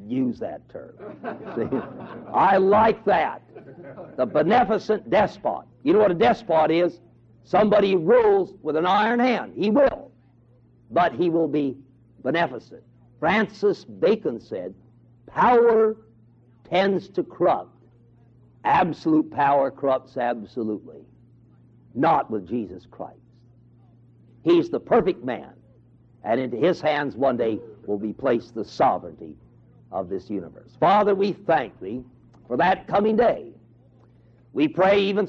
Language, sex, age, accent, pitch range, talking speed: English, male, 60-79, American, 120-195 Hz, 120 wpm